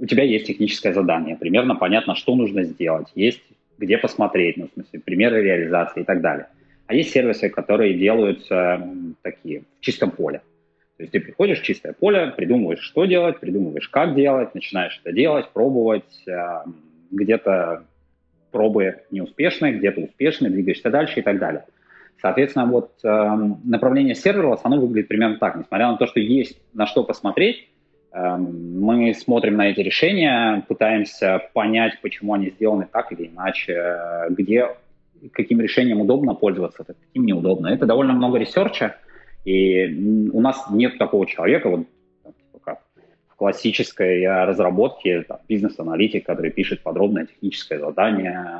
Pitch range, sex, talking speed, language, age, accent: 85-115 Hz, male, 145 wpm, Russian, 20-39, native